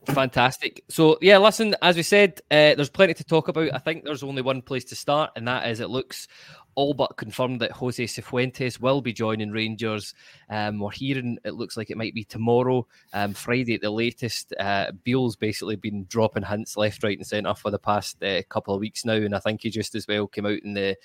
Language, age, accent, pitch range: English, 20-39, British, 105-125 Hz